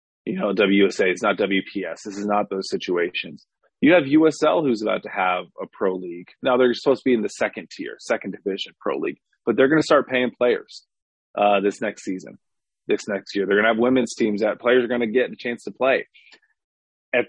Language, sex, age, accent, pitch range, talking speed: English, male, 30-49, American, 105-135 Hz, 225 wpm